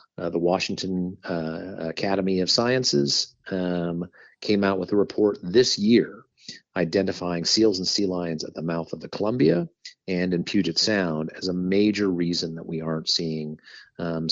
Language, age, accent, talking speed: English, 40-59, American, 165 wpm